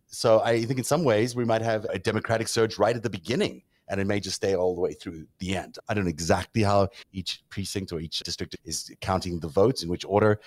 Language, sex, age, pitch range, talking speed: English, male, 30-49, 95-130 Hz, 250 wpm